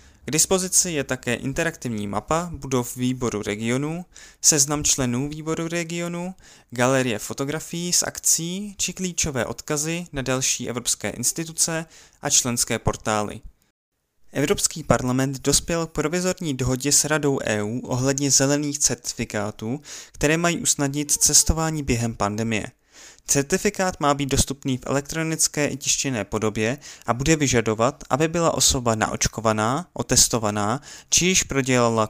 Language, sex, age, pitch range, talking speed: Czech, male, 20-39, 115-150 Hz, 120 wpm